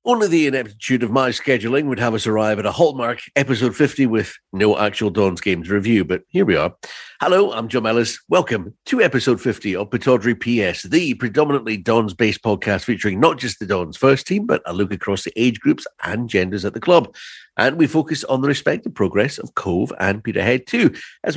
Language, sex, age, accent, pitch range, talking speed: English, male, 50-69, British, 100-130 Hz, 205 wpm